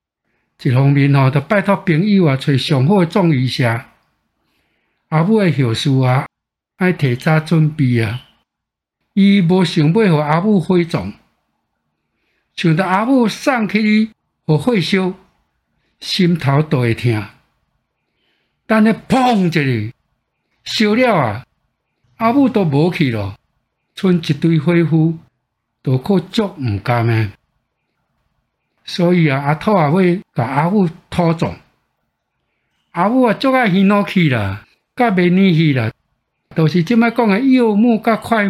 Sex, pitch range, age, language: male, 130-200 Hz, 60-79, Chinese